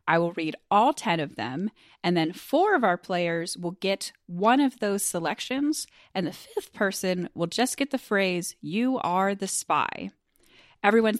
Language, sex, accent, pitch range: English, female, American, 165-230 Hz